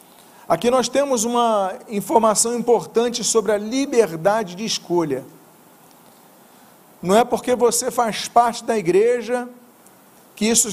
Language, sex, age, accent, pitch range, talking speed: Portuguese, male, 40-59, Brazilian, 210-245 Hz, 115 wpm